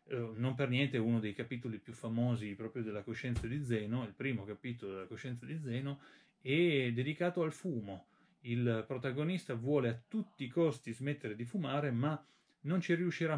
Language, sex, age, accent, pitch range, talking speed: Italian, male, 30-49, native, 120-170 Hz, 170 wpm